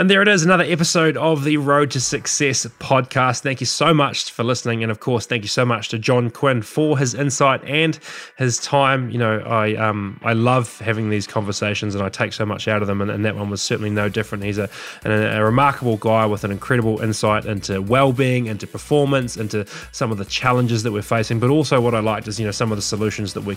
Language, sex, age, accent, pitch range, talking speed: English, male, 20-39, Australian, 105-130 Hz, 240 wpm